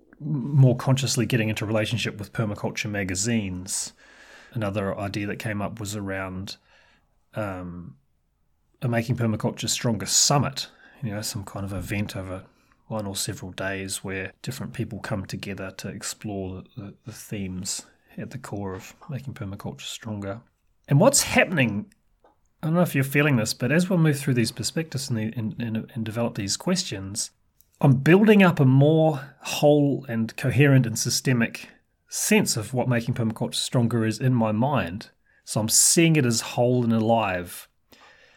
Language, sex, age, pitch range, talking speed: English, male, 30-49, 105-130 Hz, 160 wpm